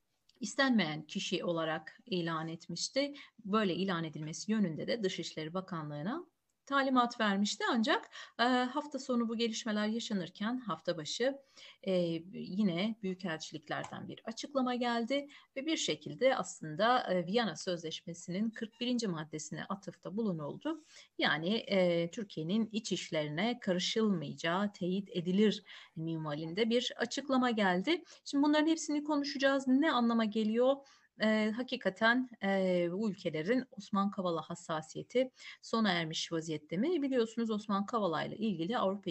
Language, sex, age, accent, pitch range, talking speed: Turkish, female, 40-59, native, 175-245 Hz, 120 wpm